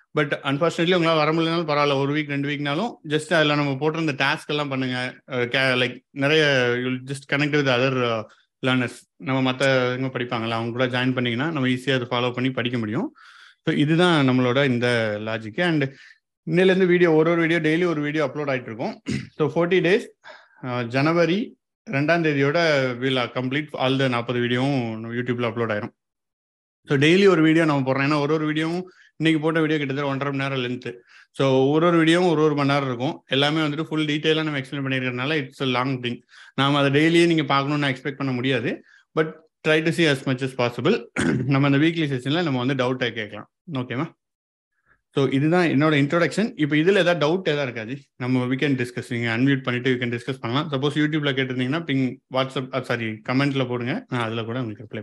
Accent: native